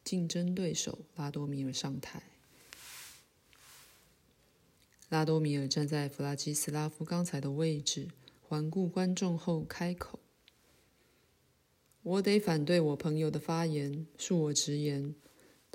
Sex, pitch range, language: female, 150-185 Hz, Chinese